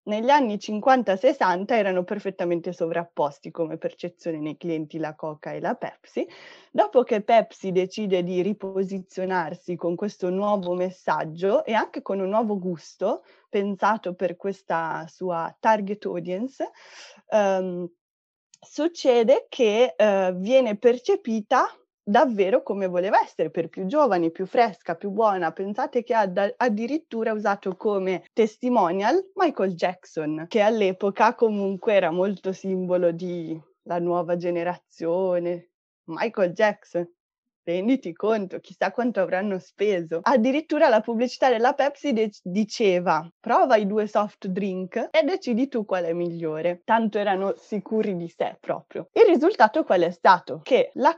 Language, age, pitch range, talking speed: Italian, 20-39, 180-230 Hz, 130 wpm